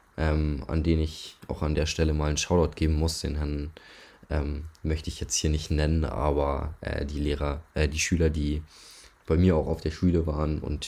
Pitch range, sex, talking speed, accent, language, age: 75-90 Hz, male, 210 wpm, German, German, 20-39